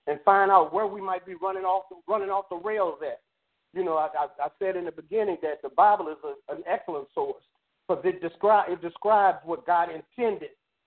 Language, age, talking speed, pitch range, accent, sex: English, 40-59, 215 wpm, 175-255 Hz, American, male